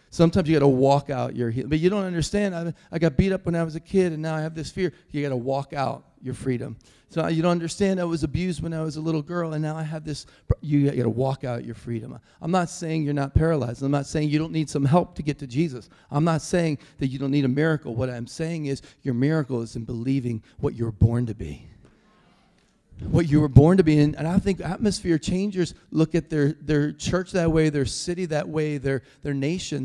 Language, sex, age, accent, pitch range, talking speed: English, male, 40-59, American, 140-175 Hz, 255 wpm